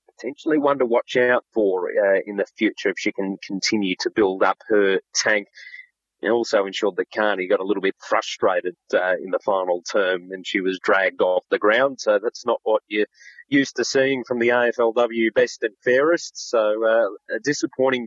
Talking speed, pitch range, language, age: 195 wpm, 100-150 Hz, English, 30-49